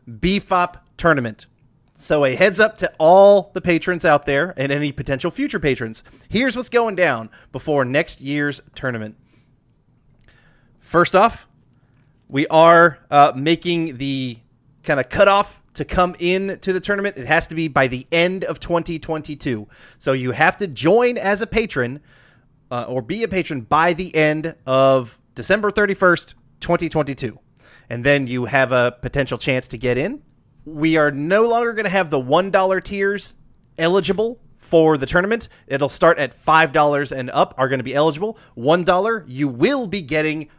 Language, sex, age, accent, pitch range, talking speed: English, male, 30-49, American, 130-180 Hz, 165 wpm